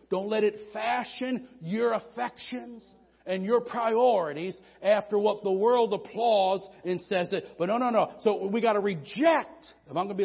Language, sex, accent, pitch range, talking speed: English, male, American, 125-210 Hz, 185 wpm